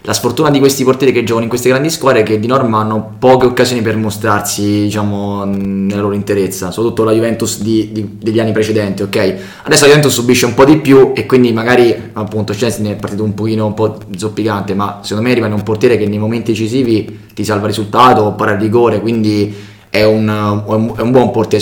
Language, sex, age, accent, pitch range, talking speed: Italian, male, 20-39, native, 105-115 Hz, 215 wpm